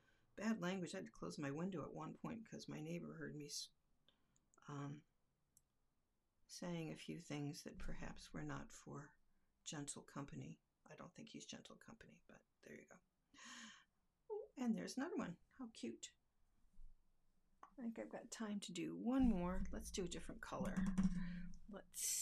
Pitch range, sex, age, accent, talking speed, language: 165-225 Hz, female, 50-69, American, 160 wpm, English